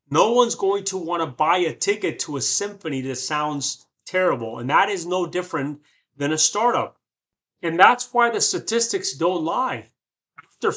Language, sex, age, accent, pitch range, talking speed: English, male, 30-49, American, 160-245 Hz, 175 wpm